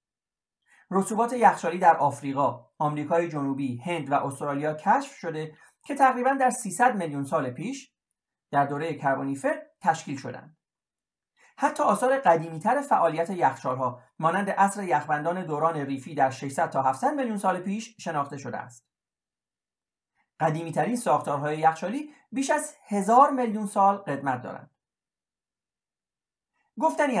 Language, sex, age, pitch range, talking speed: Persian, male, 40-59, 150-215 Hz, 120 wpm